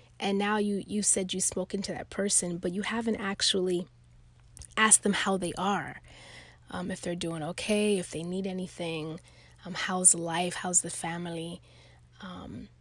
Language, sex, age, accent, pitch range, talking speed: English, female, 20-39, American, 170-225 Hz, 165 wpm